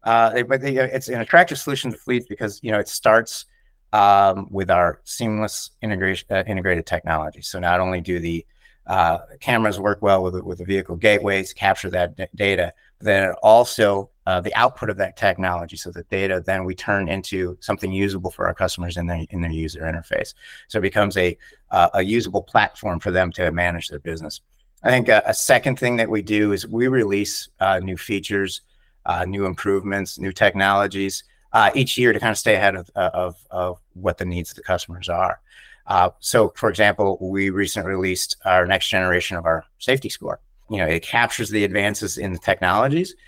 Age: 30-49